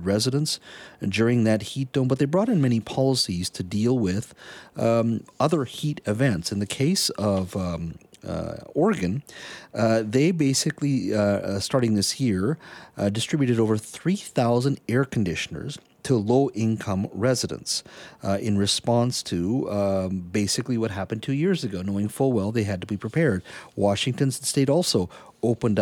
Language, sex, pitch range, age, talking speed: English, male, 100-130 Hz, 40-59, 150 wpm